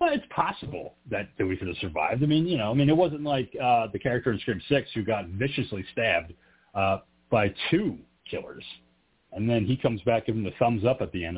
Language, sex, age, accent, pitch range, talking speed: English, male, 40-59, American, 100-135 Hz, 235 wpm